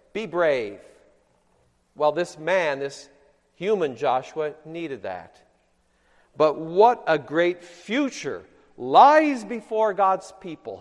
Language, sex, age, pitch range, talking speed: English, male, 50-69, 145-230 Hz, 105 wpm